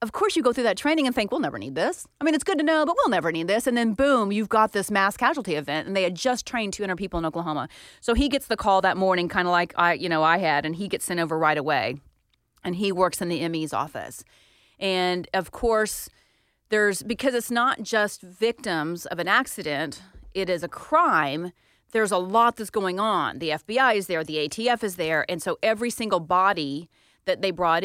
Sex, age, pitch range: female, 30-49, 170-225 Hz